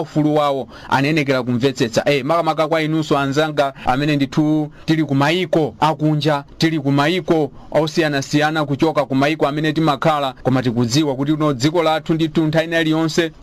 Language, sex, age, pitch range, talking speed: English, male, 40-59, 140-165 Hz, 150 wpm